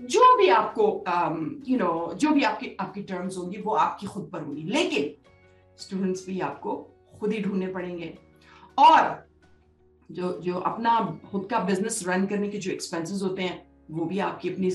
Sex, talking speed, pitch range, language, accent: female, 185 wpm, 185-230 Hz, English, Indian